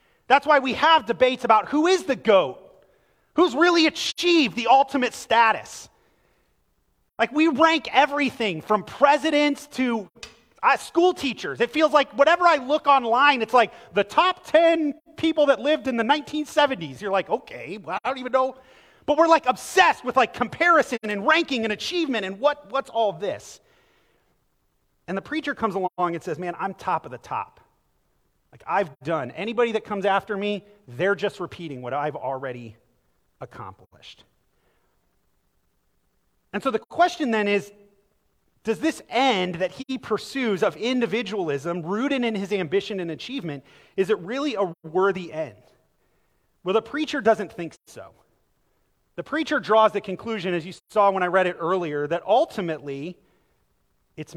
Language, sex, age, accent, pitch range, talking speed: English, male, 30-49, American, 185-285 Hz, 155 wpm